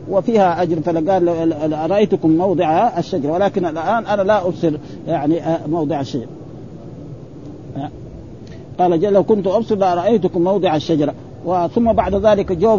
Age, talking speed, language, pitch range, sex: 50-69, 120 wpm, Arabic, 160-200 Hz, male